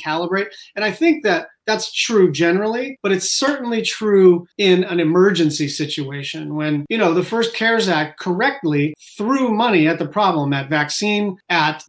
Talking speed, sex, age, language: 160 wpm, male, 30-49, English